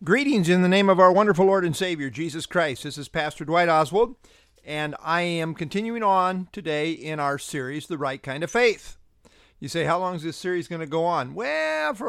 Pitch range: 135-185 Hz